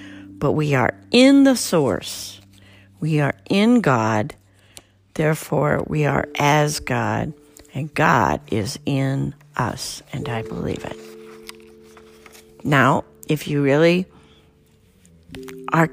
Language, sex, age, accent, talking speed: English, female, 50-69, American, 110 wpm